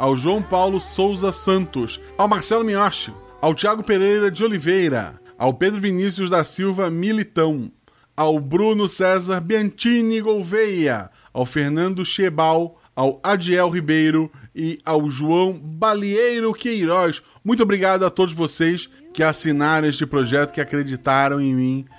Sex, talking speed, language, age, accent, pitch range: male, 130 wpm, Portuguese, 20-39, Brazilian, 150-200 Hz